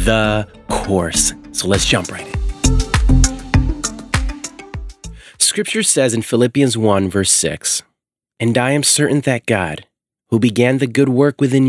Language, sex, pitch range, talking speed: English, male, 100-140 Hz, 135 wpm